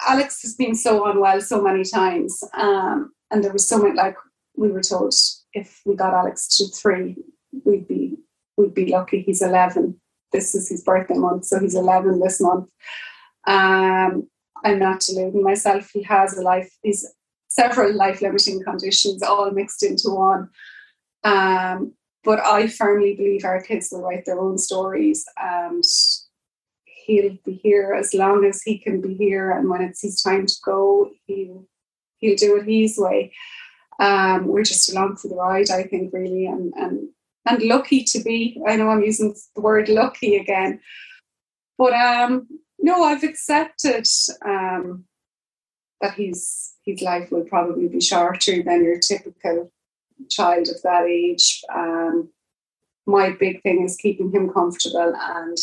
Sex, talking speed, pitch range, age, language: female, 160 wpm, 185-215 Hz, 20-39, English